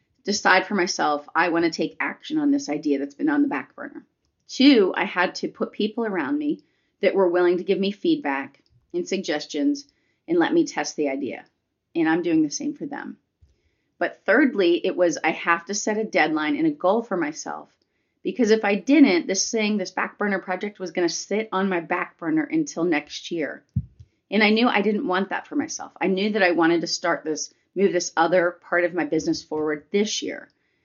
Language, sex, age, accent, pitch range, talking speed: English, female, 30-49, American, 165-245 Hz, 215 wpm